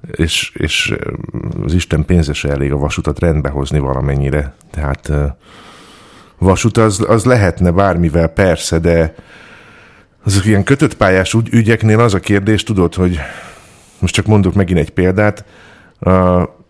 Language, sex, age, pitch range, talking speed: Hungarian, male, 50-69, 80-95 Hz, 130 wpm